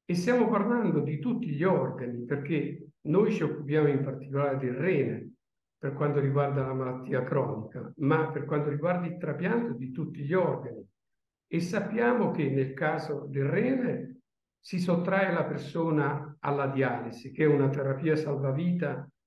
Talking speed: 155 wpm